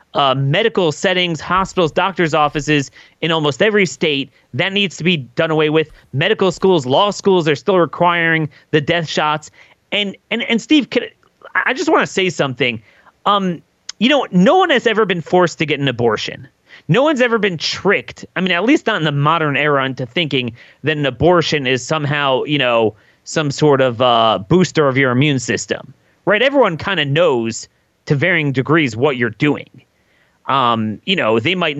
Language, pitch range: English, 145-200 Hz